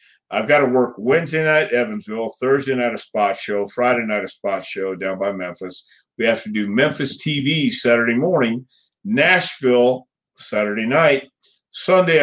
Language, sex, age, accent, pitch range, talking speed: English, male, 50-69, American, 105-135 Hz, 155 wpm